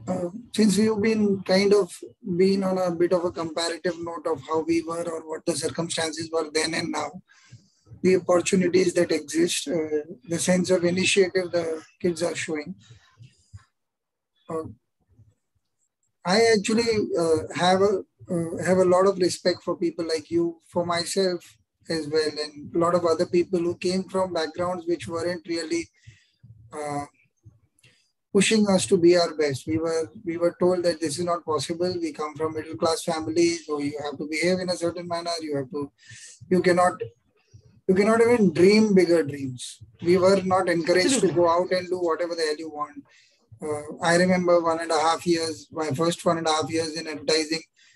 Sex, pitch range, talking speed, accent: male, 160-180 Hz, 180 wpm, Indian